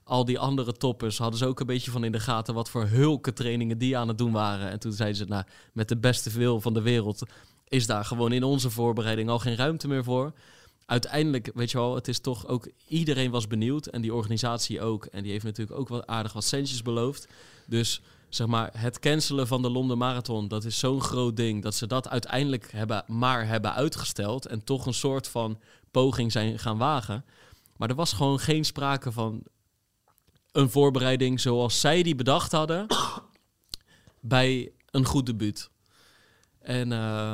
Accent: Dutch